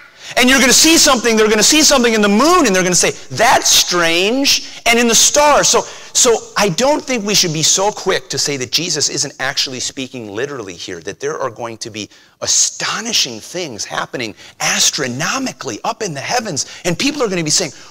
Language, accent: English, American